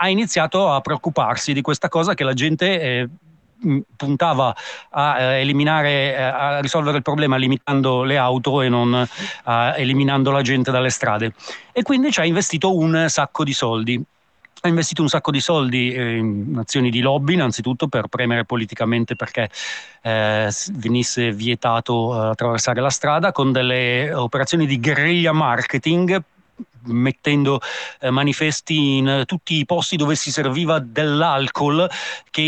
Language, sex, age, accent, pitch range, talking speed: Italian, male, 30-49, native, 120-155 Hz, 145 wpm